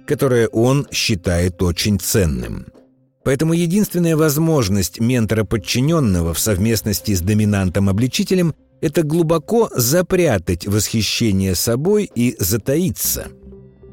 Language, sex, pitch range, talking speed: Russian, male, 105-155 Hz, 85 wpm